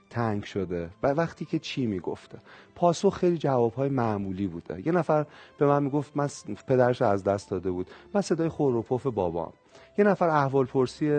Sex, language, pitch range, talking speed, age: male, Persian, 105-150 Hz, 190 wpm, 30-49